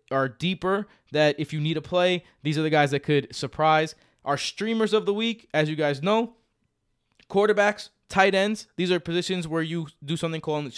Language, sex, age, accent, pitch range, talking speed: English, male, 20-39, American, 140-175 Hz, 195 wpm